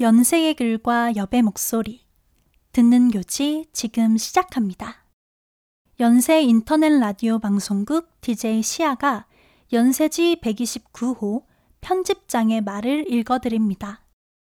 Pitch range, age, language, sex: 220-270 Hz, 20-39, Korean, female